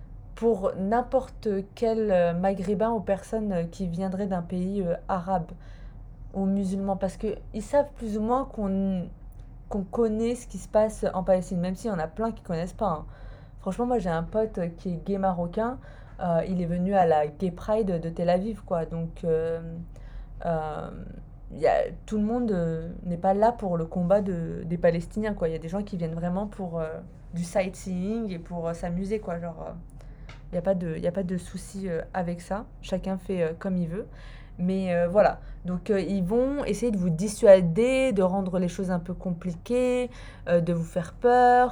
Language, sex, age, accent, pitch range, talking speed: French, female, 20-39, French, 175-210 Hz, 195 wpm